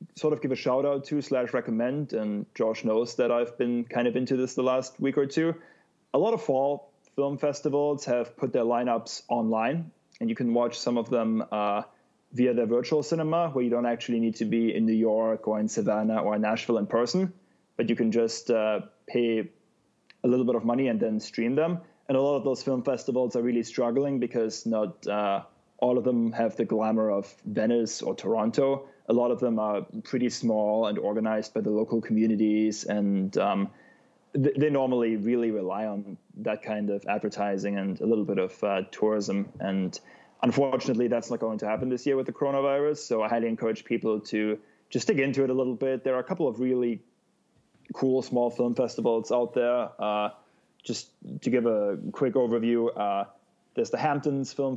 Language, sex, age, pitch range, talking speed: English, male, 20-39, 110-135 Hz, 200 wpm